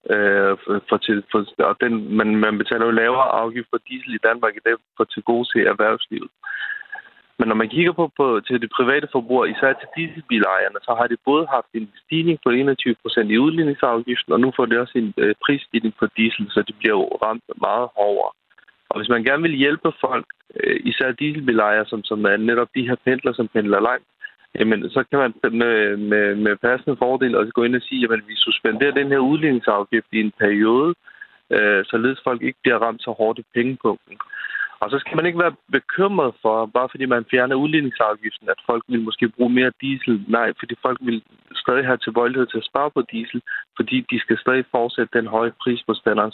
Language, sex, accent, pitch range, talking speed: Danish, male, native, 115-140 Hz, 205 wpm